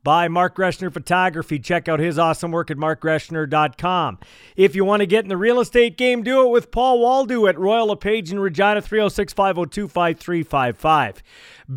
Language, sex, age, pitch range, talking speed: English, male, 40-59, 165-205 Hz, 165 wpm